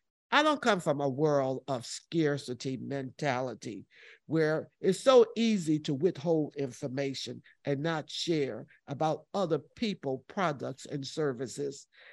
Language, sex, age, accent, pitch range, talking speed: English, male, 50-69, American, 145-205 Hz, 125 wpm